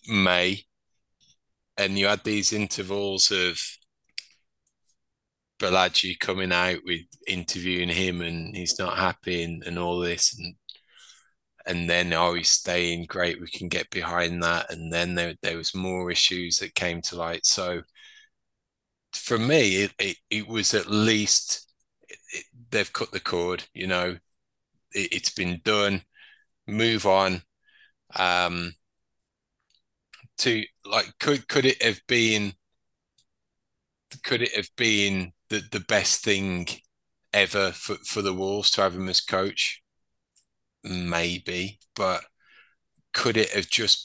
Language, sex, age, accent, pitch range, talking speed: English, male, 20-39, British, 90-105 Hz, 135 wpm